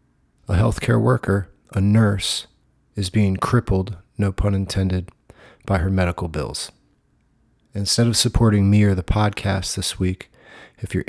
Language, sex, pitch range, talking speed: English, male, 95-110 Hz, 140 wpm